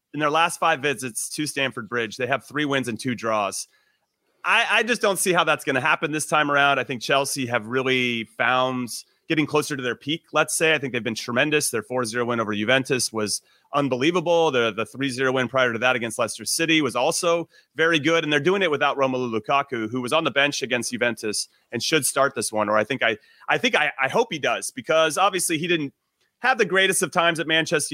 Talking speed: 235 wpm